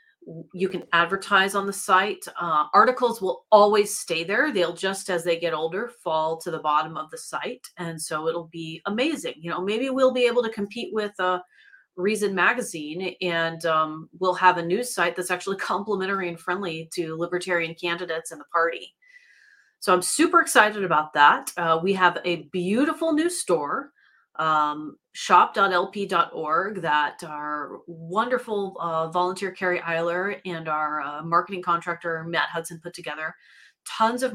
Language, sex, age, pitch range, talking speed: English, female, 30-49, 160-195 Hz, 160 wpm